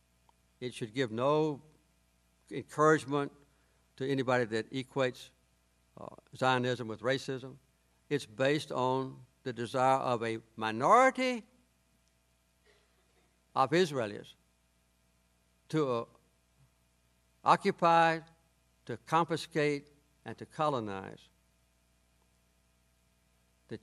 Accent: American